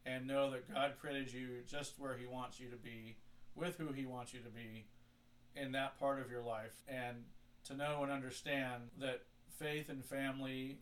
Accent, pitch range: American, 120-130 Hz